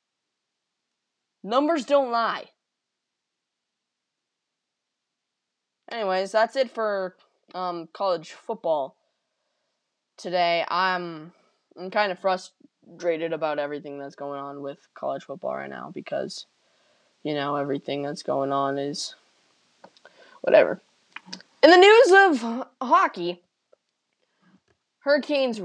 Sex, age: female, 20-39